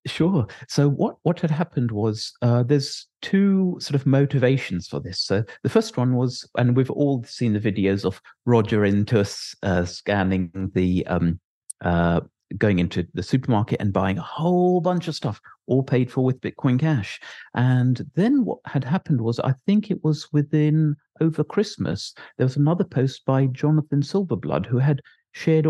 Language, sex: English, male